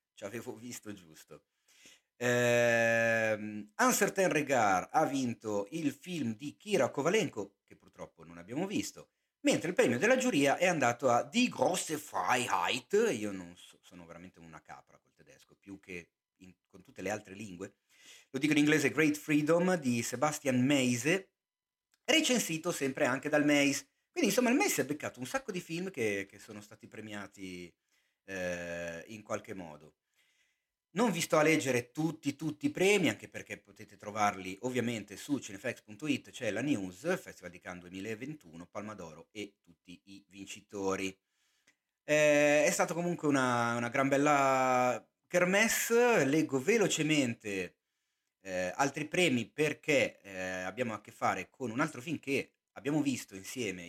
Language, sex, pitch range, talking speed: Italian, male, 100-155 Hz, 155 wpm